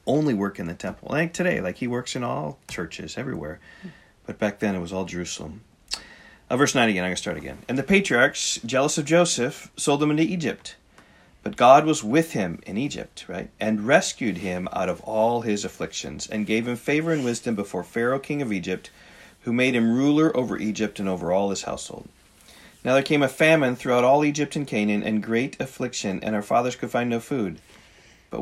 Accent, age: American, 40-59